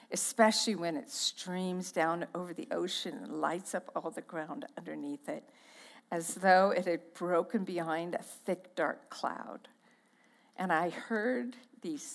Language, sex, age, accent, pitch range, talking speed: English, female, 50-69, American, 185-250 Hz, 150 wpm